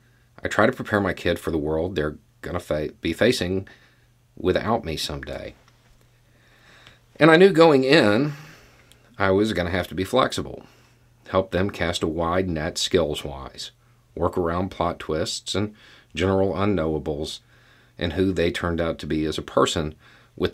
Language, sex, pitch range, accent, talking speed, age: English, male, 85-120 Hz, American, 160 wpm, 40-59